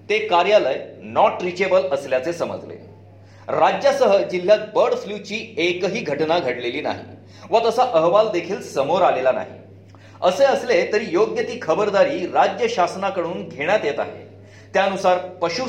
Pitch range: 165-215 Hz